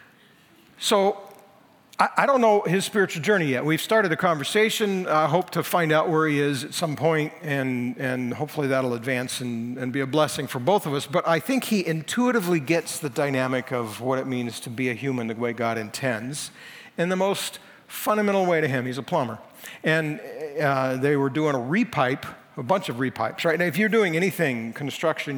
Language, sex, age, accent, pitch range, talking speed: English, male, 50-69, American, 140-195 Hz, 205 wpm